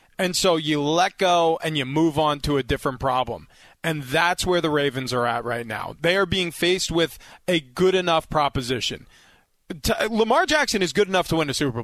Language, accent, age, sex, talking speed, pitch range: English, American, 30-49, male, 210 wpm, 155-215 Hz